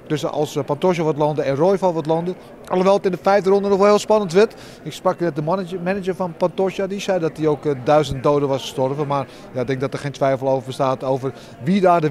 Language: Dutch